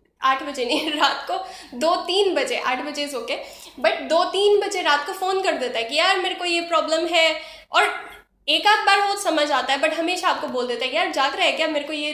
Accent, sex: native, female